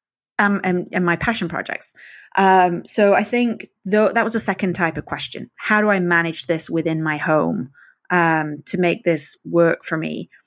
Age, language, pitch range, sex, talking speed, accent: 30-49, English, 170-205 Hz, female, 190 wpm, British